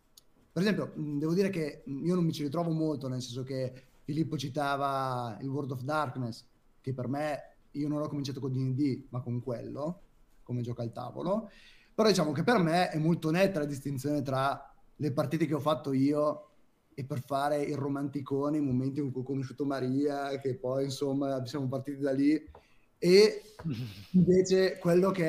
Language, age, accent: Italian, 30-49, native